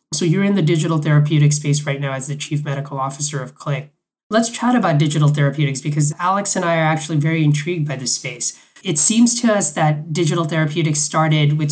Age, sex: 20-39, male